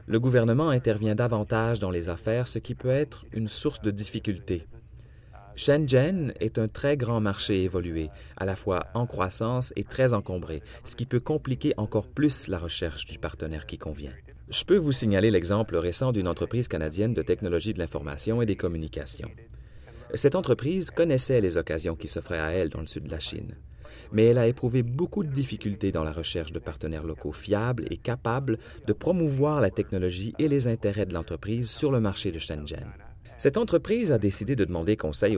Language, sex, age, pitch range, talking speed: French, male, 30-49, 85-125 Hz, 185 wpm